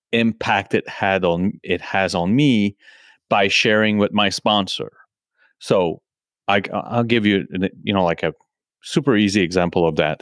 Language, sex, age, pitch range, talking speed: English, male, 30-49, 90-105 Hz, 160 wpm